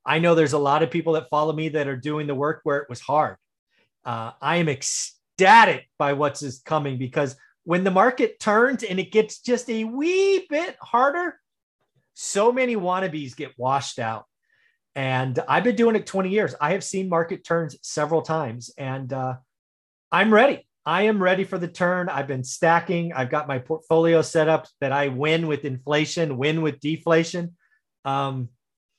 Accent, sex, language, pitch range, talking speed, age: American, male, English, 135-175 Hz, 180 wpm, 30-49